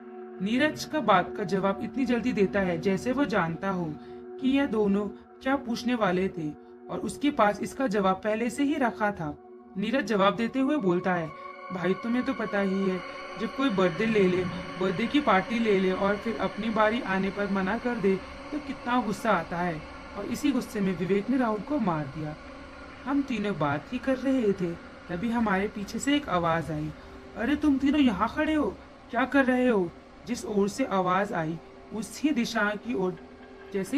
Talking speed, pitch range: 195 wpm, 185-250 Hz